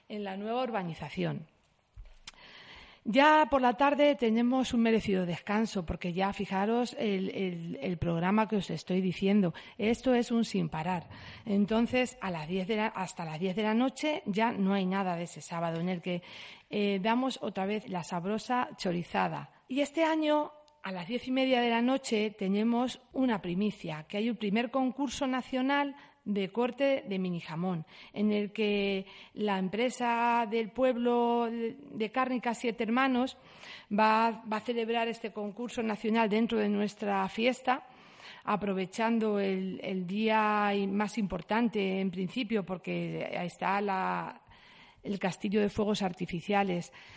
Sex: female